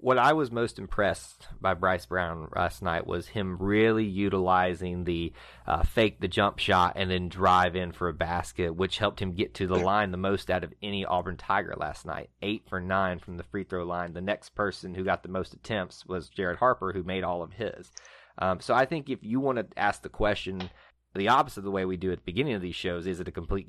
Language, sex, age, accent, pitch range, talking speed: English, male, 30-49, American, 90-110 Hz, 240 wpm